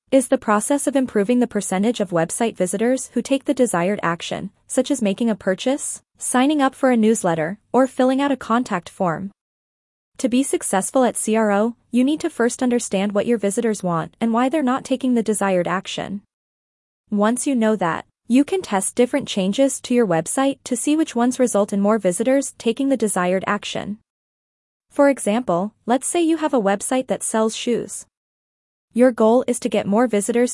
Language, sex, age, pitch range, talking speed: English, female, 20-39, 200-255 Hz, 185 wpm